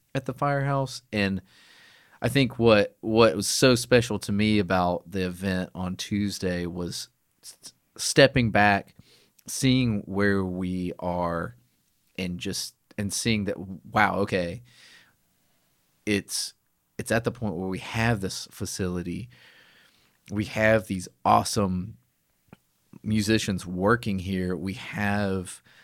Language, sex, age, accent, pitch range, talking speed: English, male, 30-49, American, 90-110 Hz, 120 wpm